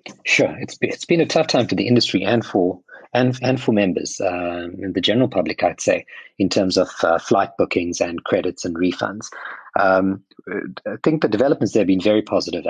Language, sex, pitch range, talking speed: English, male, 90-110 Hz, 205 wpm